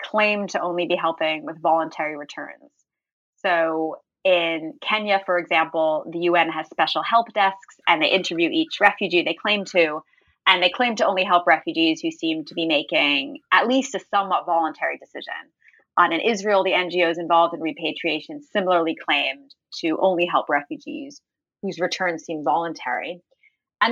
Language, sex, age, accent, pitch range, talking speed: English, female, 20-39, American, 165-210 Hz, 160 wpm